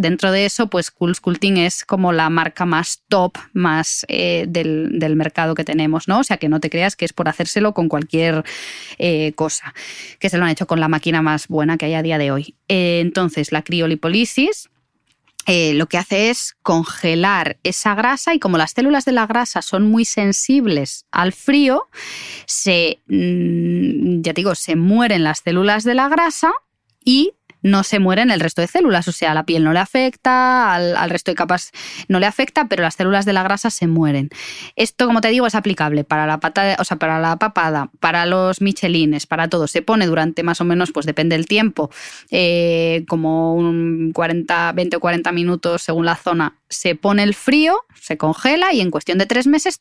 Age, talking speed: 20-39, 200 wpm